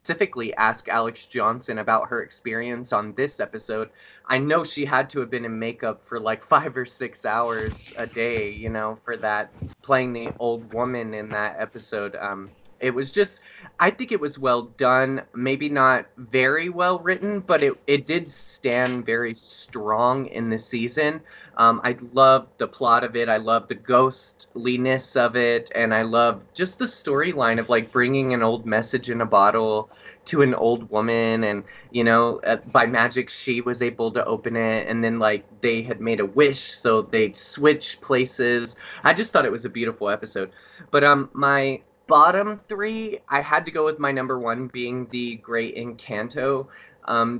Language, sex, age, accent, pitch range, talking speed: English, male, 20-39, American, 115-140 Hz, 180 wpm